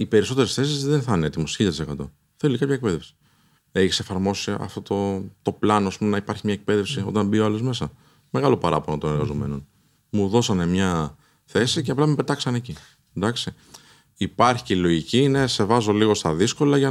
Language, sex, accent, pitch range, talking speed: Greek, male, native, 80-135 Hz, 180 wpm